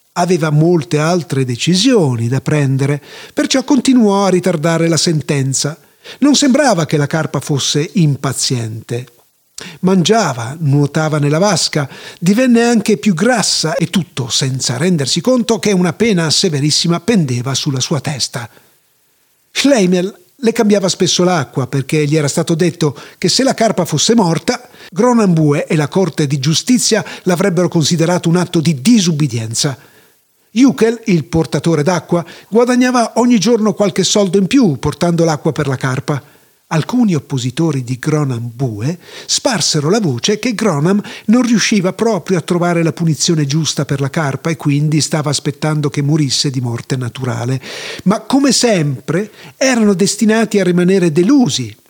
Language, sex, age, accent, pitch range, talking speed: Italian, male, 40-59, native, 145-205 Hz, 140 wpm